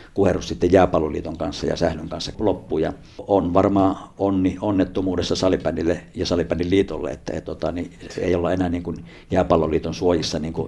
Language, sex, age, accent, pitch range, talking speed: Finnish, male, 50-69, native, 85-95 Hz, 155 wpm